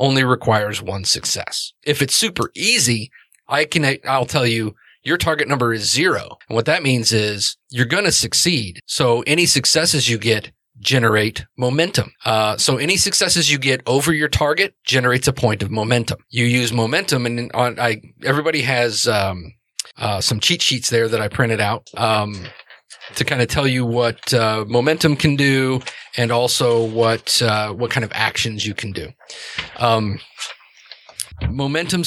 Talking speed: 170 wpm